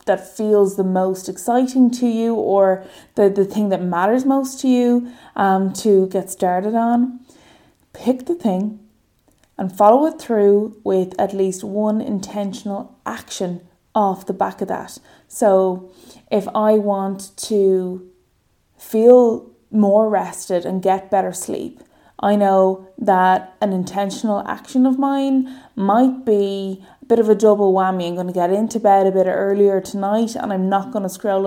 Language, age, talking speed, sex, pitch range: English, 20-39, 155 wpm, female, 195-230 Hz